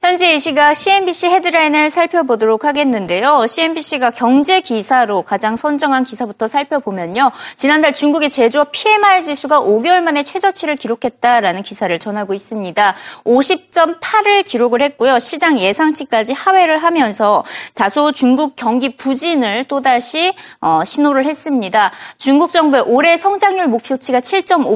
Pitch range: 230-335 Hz